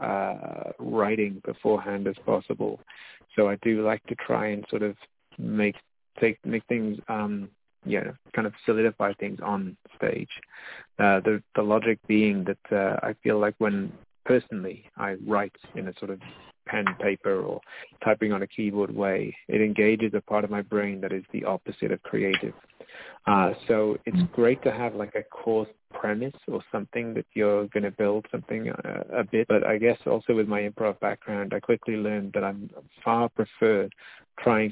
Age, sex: 30-49, male